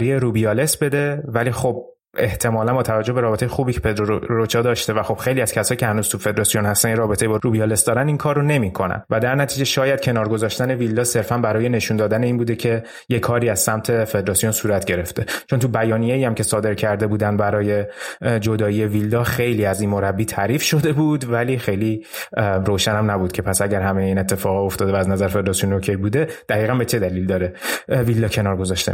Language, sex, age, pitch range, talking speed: Persian, male, 30-49, 110-125 Hz, 200 wpm